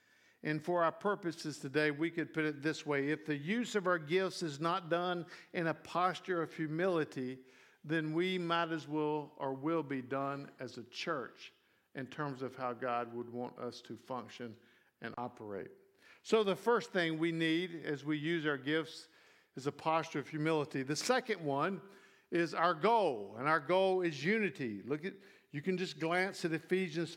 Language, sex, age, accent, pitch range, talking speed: English, male, 50-69, American, 155-185 Hz, 185 wpm